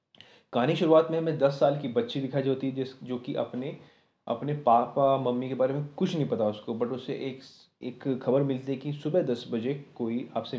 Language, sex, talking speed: Hindi, male, 215 wpm